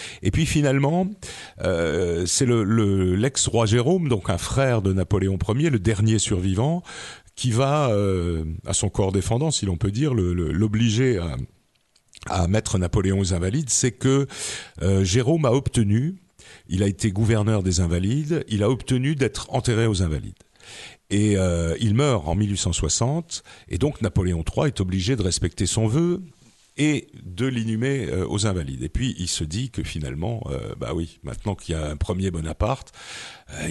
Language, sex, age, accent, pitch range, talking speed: French, male, 50-69, French, 95-120 Hz, 170 wpm